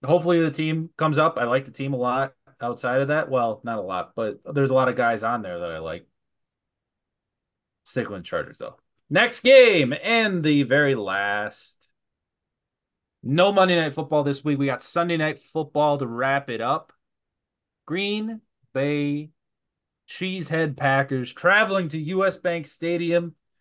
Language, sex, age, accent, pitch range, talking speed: English, male, 30-49, American, 125-170 Hz, 160 wpm